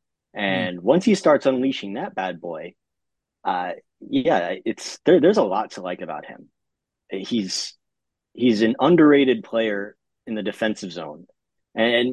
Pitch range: 100-120 Hz